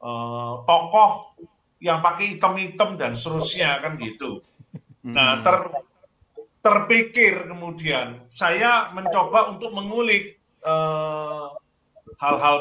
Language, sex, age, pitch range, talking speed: Indonesian, male, 40-59, 160-210 Hz, 90 wpm